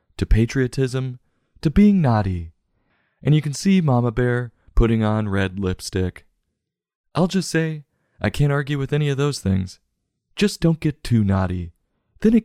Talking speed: 160 wpm